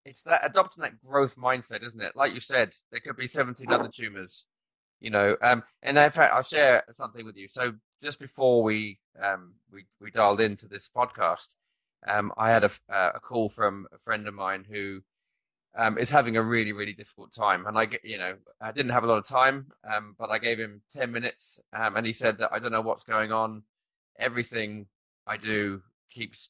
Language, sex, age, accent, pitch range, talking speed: English, male, 20-39, British, 105-125 Hz, 210 wpm